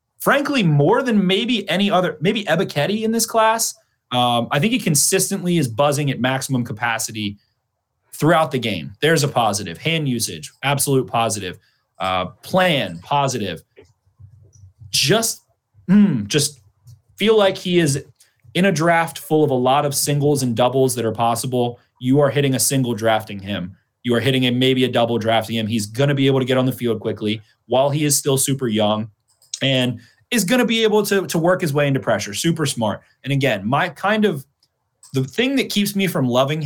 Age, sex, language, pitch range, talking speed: 30-49, male, English, 115-150 Hz, 185 wpm